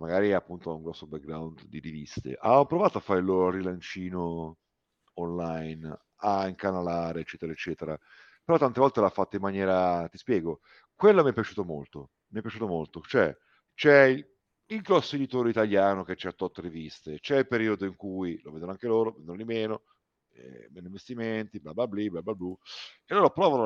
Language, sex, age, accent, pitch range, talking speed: Italian, male, 50-69, native, 85-115 Hz, 185 wpm